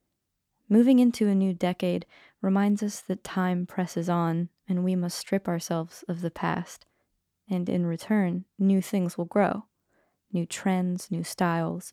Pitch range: 175-195 Hz